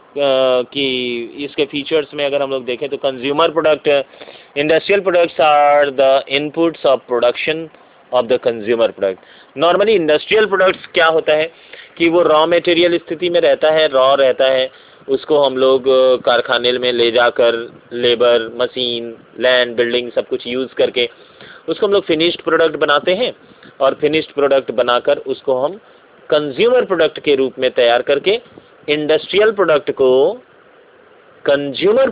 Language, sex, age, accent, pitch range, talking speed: Hindi, male, 30-49, native, 130-205 Hz, 145 wpm